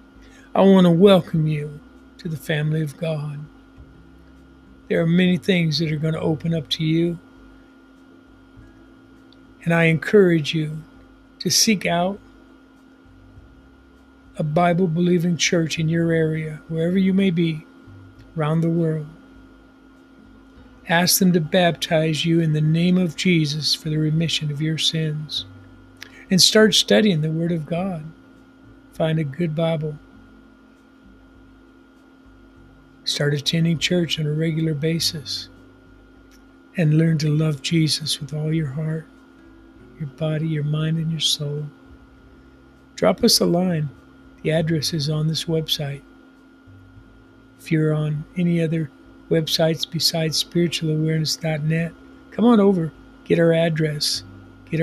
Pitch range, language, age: 145-170 Hz, English, 50-69